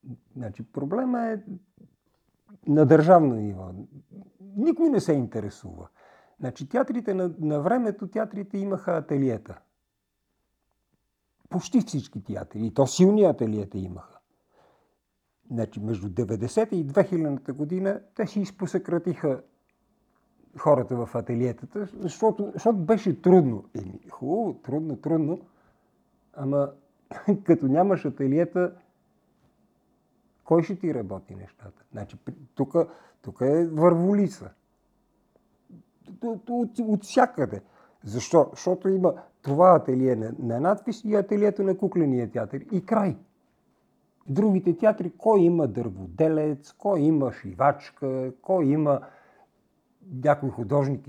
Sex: male